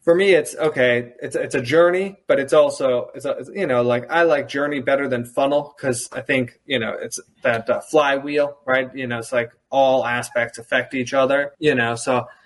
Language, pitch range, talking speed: English, 125-155 Hz, 215 wpm